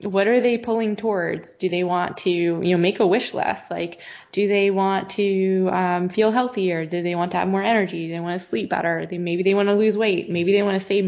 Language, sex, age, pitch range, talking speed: English, female, 20-39, 175-205 Hz, 260 wpm